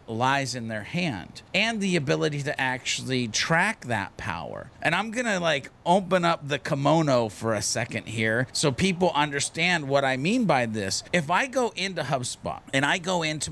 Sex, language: male, English